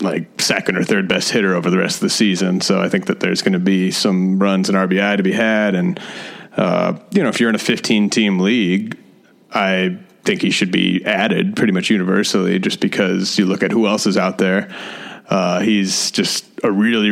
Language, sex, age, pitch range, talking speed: English, male, 30-49, 95-110 Hz, 215 wpm